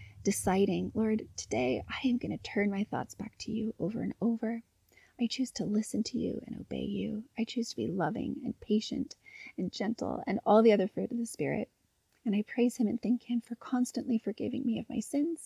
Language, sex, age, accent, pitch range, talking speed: English, female, 30-49, American, 205-240 Hz, 215 wpm